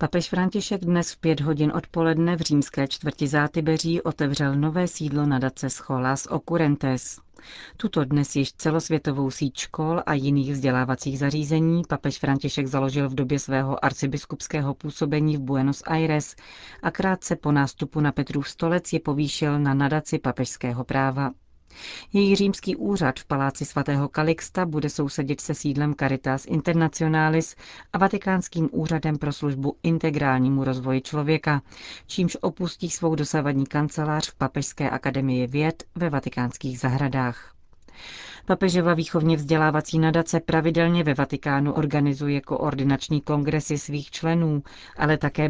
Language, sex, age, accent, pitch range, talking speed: Czech, female, 40-59, native, 140-165 Hz, 130 wpm